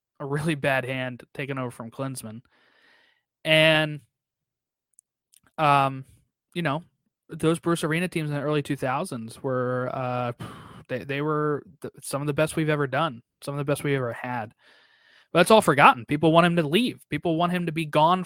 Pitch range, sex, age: 140-170 Hz, male, 20-39